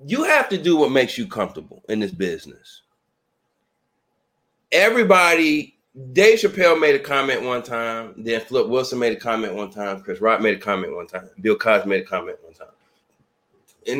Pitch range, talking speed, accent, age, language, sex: 125-175 Hz, 180 wpm, American, 30-49, English, male